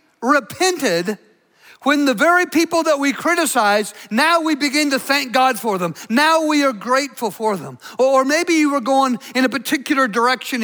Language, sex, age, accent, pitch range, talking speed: English, male, 50-69, American, 195-280 Hz, 175 wpm